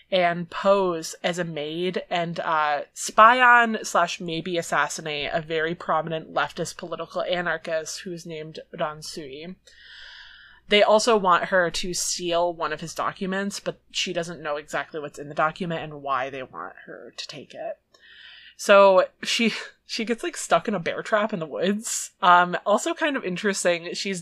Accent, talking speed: American, 165 wpm